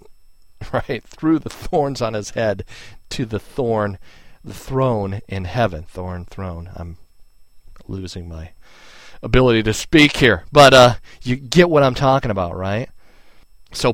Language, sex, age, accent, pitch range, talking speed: English, male, 40-59, American, 90-115 Hz, 140 wpm